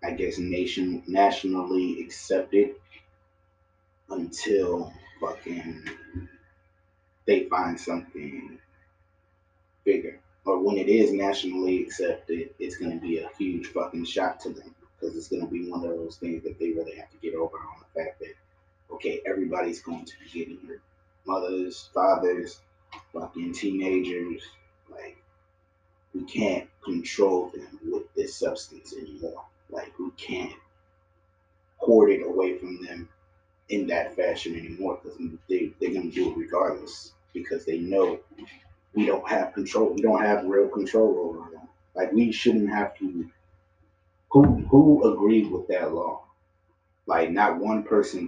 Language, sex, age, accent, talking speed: English, male, 30-49, American, 145 wpm